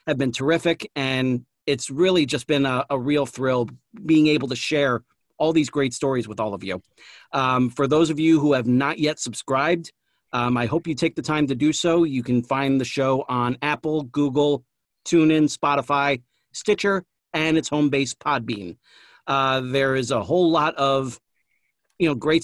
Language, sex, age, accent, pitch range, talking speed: English, male, 40-59, American, 135-160 Hz, 185 wpm